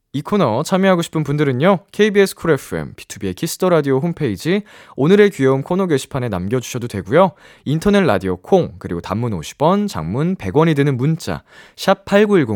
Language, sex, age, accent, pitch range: Korean, male, 20-39, native, 120-190 Hz